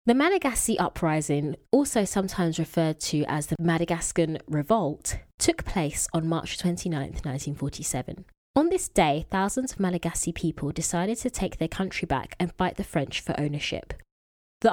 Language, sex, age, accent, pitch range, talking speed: English, female, 20-39, British, 155-200 Hz, 150 wpm